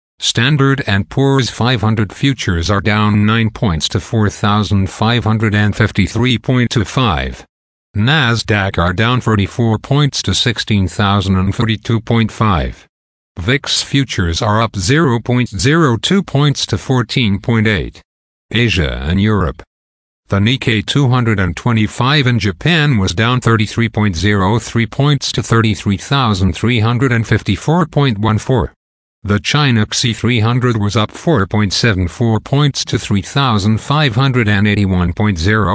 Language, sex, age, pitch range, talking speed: English, male, 50-69, 100-125 Hz, 75 wpm